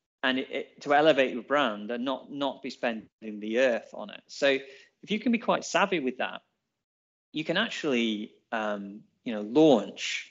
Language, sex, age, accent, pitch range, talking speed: English, male, 30-49, British, 115-155 Hz, 185 wpm